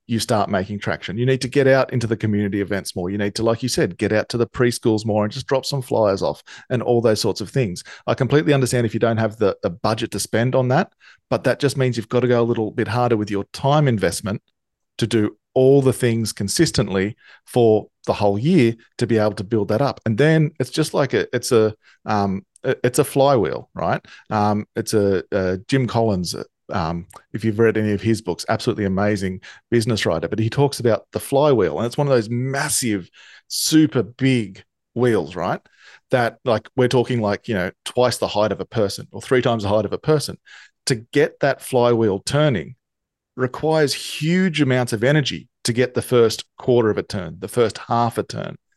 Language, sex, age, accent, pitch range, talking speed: English, male, 40-59, Australian, 105-130 Hz, 220 wpm